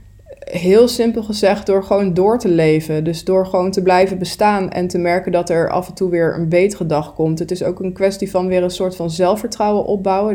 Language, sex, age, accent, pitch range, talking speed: Dutch, female, 20-39, Dutch, 160-190 Hz, 225 wpm